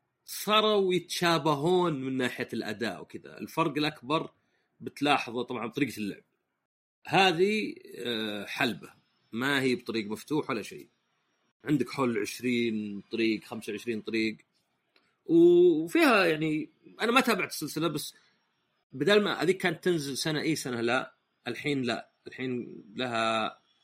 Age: 30-49